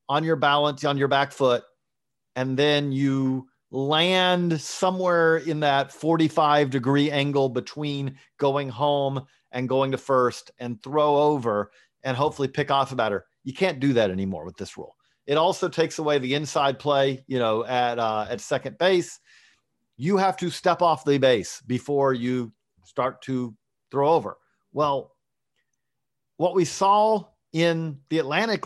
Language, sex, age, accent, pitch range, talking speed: English, male, 40-59, American, 130-165 Hz, 155 wpm